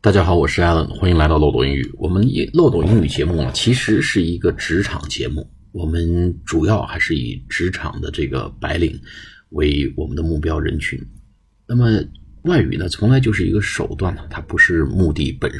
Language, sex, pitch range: Chinese, male, 75-95 Hz